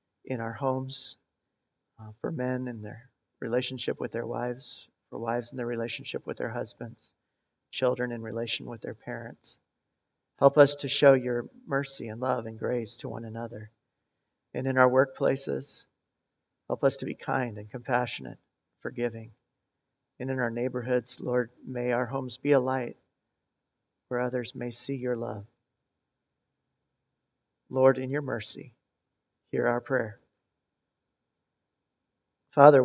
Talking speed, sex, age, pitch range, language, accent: 140 wpm, male, 40-59, 120-135 Hz, English, American